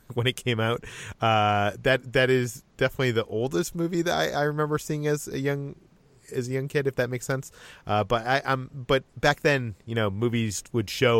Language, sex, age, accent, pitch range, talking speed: English, male, 30-49, American, 105-125 Hz, 215 wpm